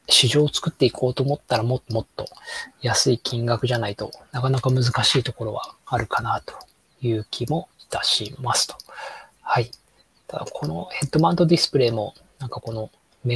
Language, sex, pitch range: Japanese, male, 115-145 Hz